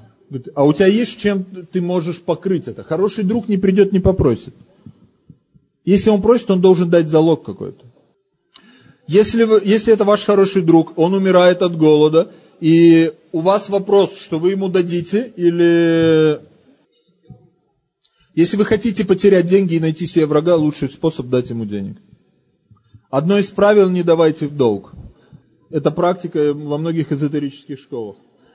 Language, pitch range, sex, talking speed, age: Russian, 155-205 Hz, male, 145 wpm, 30-49